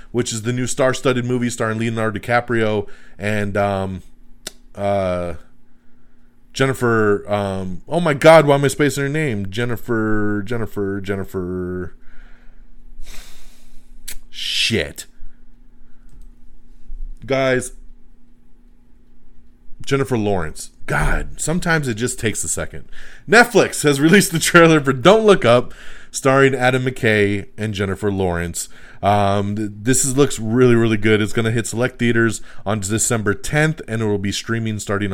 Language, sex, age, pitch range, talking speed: English, male, 30-49, 95-130 Hz, 125 wpm